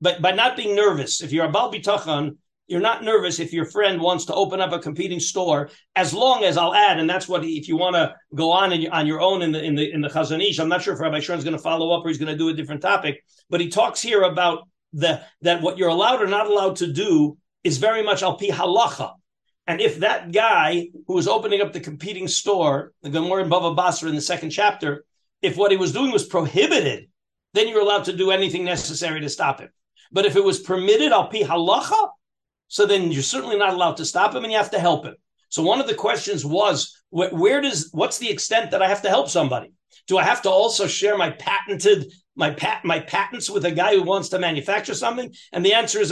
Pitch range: 170-215 Hz